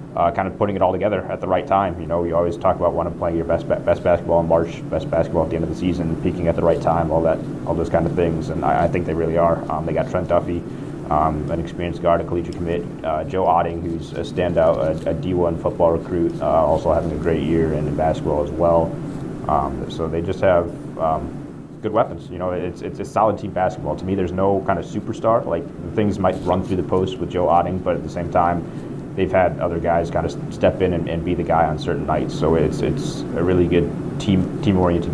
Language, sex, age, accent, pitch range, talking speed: English, male, 30-49, American, 85-90 Hz, 255 wpm